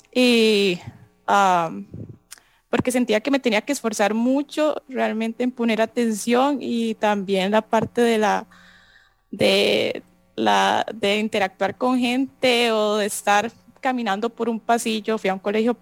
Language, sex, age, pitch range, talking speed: English, female, 20-39, 185-230 Hz, 140 wpm